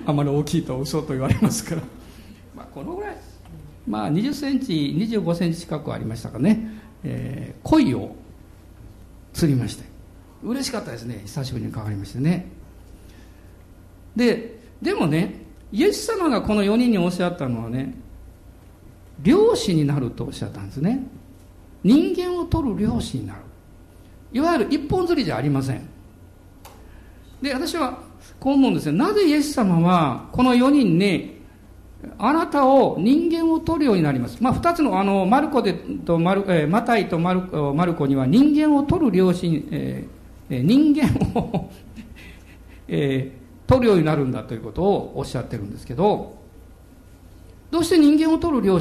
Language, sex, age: Japanese, male, 50-69